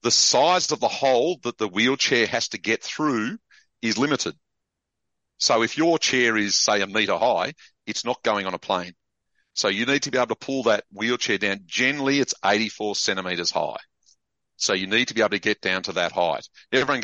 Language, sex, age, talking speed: English, male, 40-59, 205 wpm